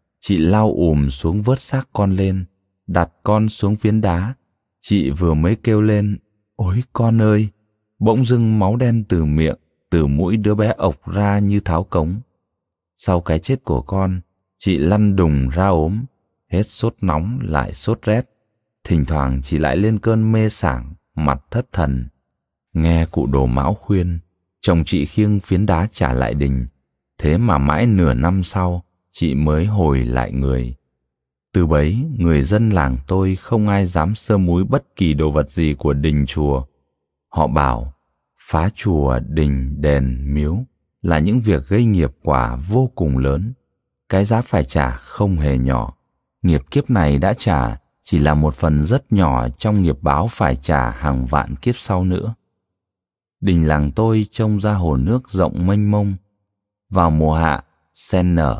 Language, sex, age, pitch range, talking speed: Vietnamese, male, 20-39, 75-105 Hz, 170 wpm